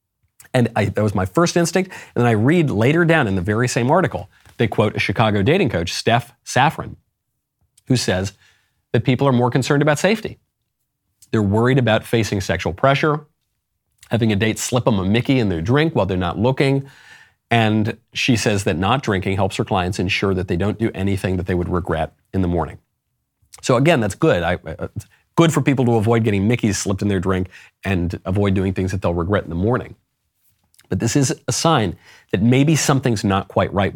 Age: 40-59